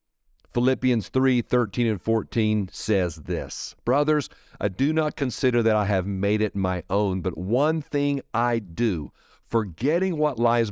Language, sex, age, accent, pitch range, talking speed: English, male, 50-69, American, 105-130 Hz, 150 wpm